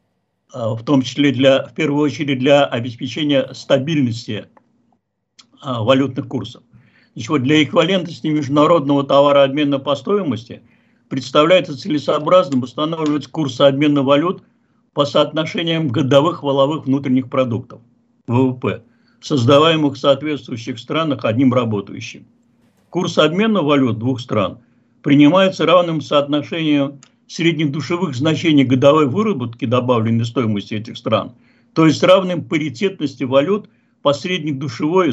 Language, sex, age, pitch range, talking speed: Russian, male, 60-79, 130-155 Hz, 110 wpm